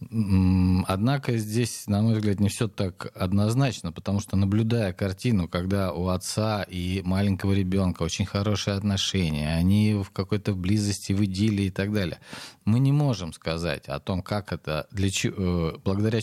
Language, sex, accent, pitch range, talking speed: Russian, male, native, 90-115 Hz, 150 wpm